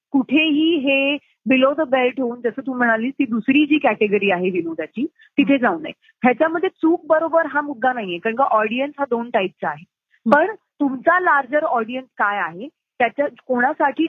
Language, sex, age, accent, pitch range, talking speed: Marathi, female, 30-49, native, 230-290 Hz, 175 wpm